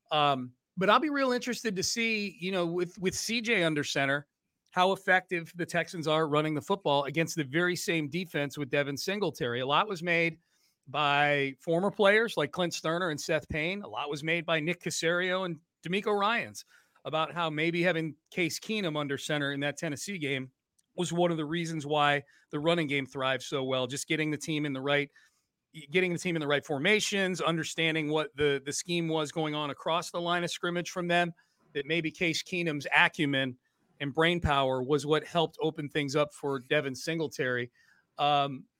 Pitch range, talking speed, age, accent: 145-175 Hz, 195 wpm, 40-59, American